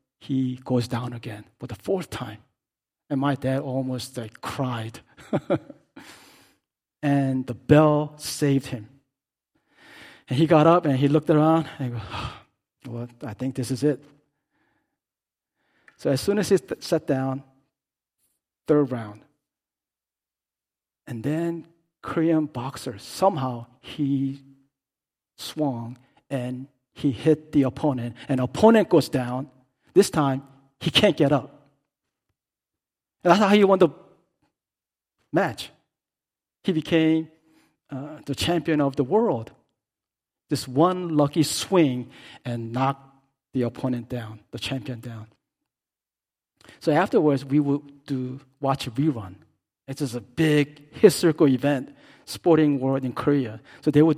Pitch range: 130-155 Hz